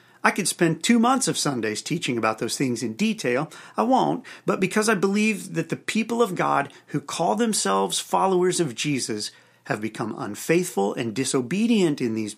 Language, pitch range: English, 130-180 Hz